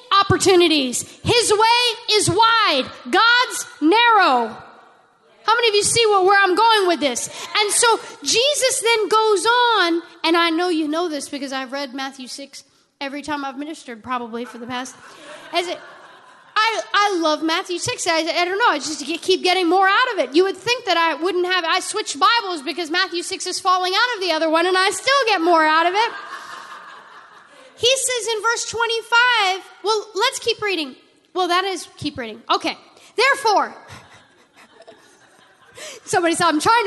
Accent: American